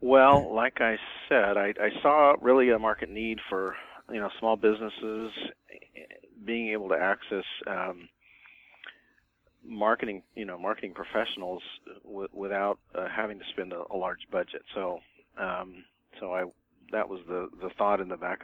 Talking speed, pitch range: 155 wpm, 95-110 Hz